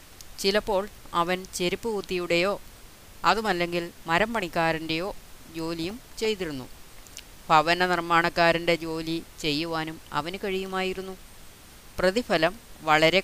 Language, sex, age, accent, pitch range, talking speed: Malayalam, female, 30-49, native, 150-175 Hz, 75 wpm